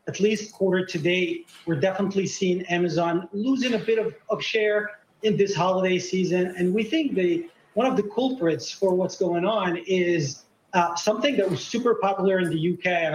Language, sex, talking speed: English, male, 190 wpm